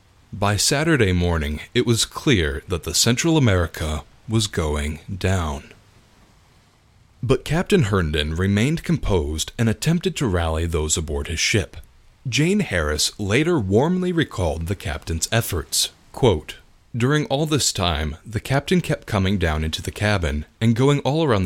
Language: English